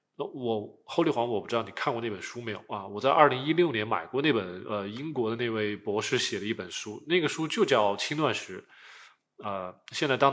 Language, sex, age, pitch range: Chinese, male, 20-39, 105-145 Hz